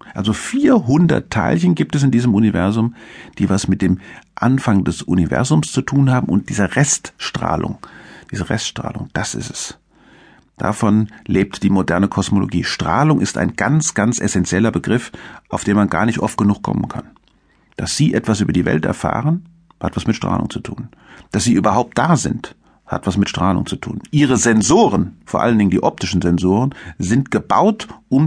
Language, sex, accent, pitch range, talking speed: German, male, German, 95-130 Hz, 175 wpm